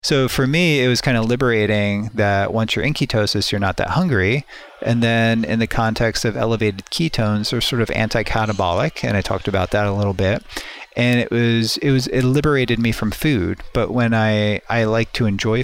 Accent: American